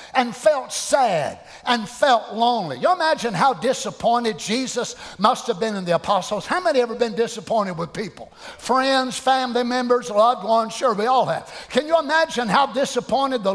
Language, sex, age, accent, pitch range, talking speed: English, male, 50-69, American, 215-275 Hz, 175 wpm